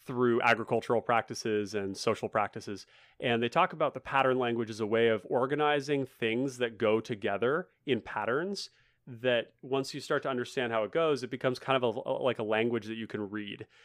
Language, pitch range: English, 115-135 Hz